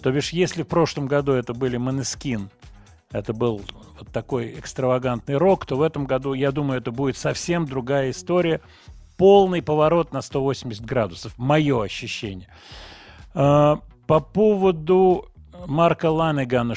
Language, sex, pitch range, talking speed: Russian, male, 120-160 Hz, 130 wpm